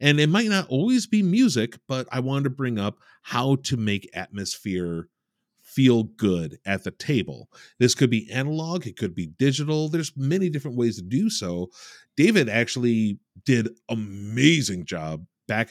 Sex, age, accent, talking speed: male, 30-49, American, 165 wpm